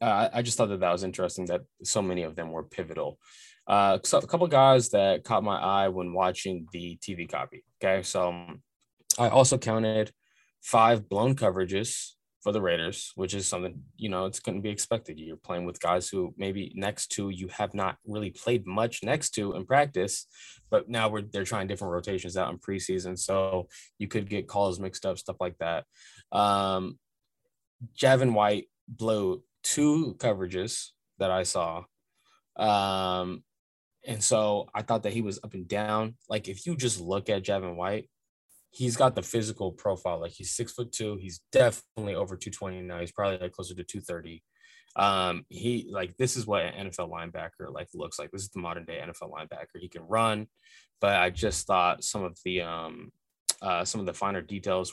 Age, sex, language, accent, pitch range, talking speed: 20-39, male, English, American, 90-115 Hz, 195 wpm